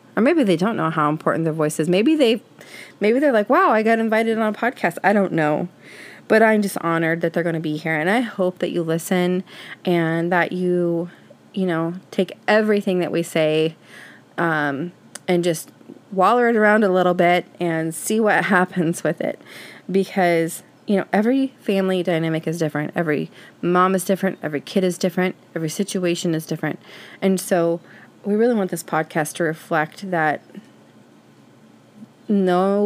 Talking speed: 175 wpm